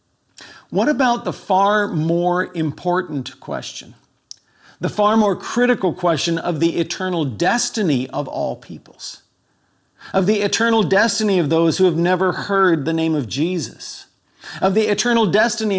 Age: 50-69